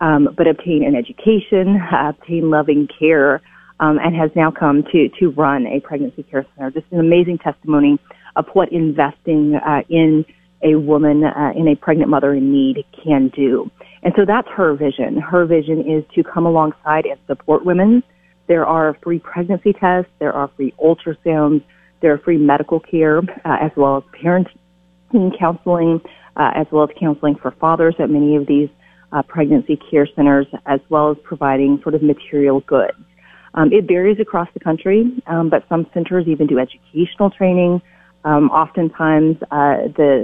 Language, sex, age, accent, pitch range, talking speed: English, female, 30-49, American, 145-175 Hz, 175 wpm